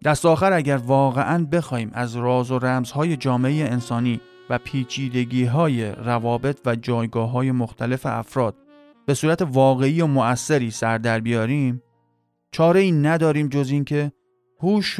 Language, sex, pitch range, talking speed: Persian, male, 125-160 Hz, 130 wpm